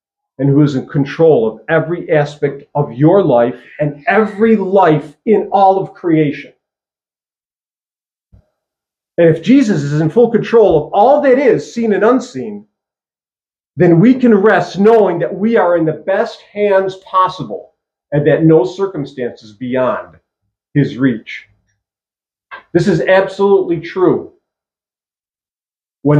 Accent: American